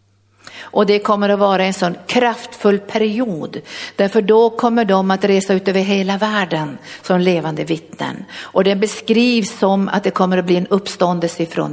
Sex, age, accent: female, 50-69, native